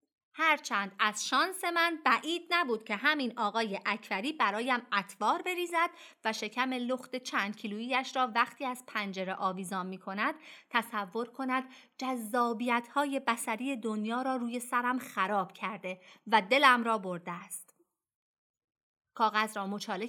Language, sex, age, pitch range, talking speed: Persian, female, 30-49, 210-290 Hz, 130 wpm